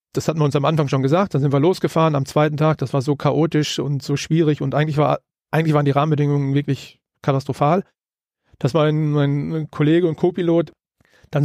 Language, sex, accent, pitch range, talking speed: German, male, German, 145-165 Hz, 195 wpm